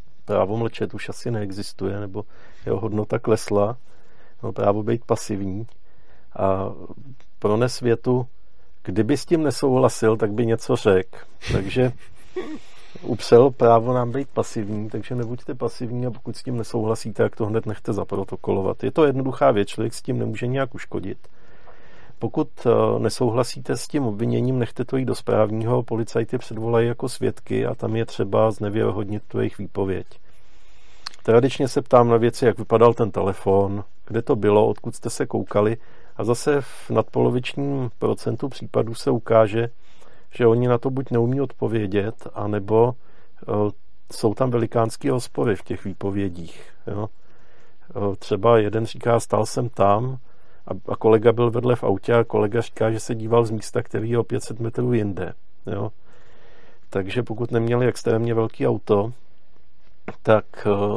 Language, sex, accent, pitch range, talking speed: Czech, male, native, 105-125 Hz, 145 wpm